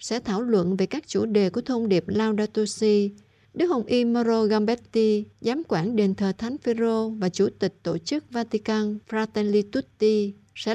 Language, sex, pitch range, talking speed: Vietnamese, female, 185-235 Hz, 180 wpm